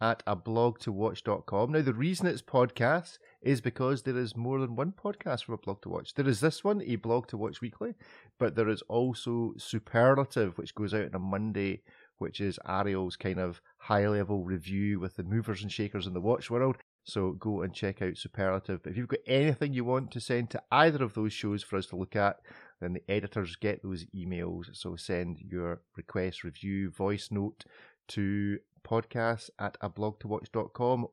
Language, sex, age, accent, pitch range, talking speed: English, male, 30-49, British, 100-135 Hz, 190 wpm